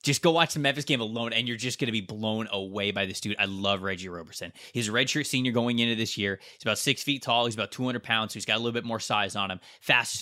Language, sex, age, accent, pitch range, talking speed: English, male, 20-39, American, 115-145 Hz, 295 wpm